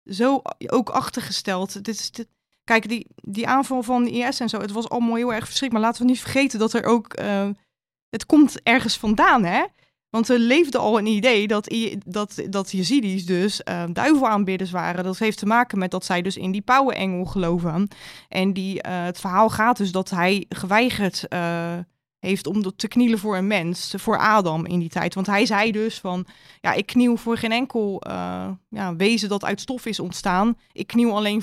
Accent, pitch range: Dutch, 190-230 Hz